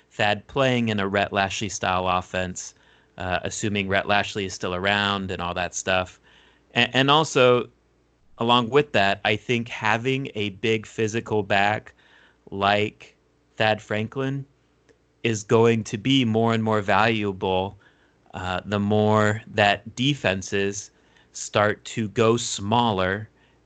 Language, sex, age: English, male, 30-49